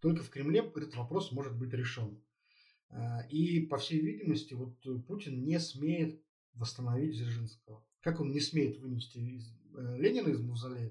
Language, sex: Russian, male